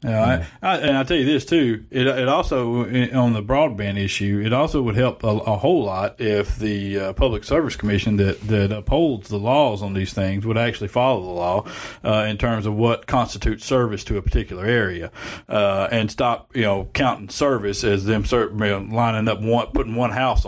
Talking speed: 210 wpm